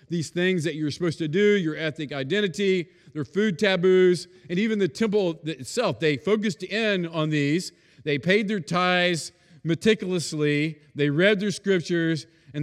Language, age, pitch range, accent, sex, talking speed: English, 40-59, 160-205 Hz, American, male, 155 wpm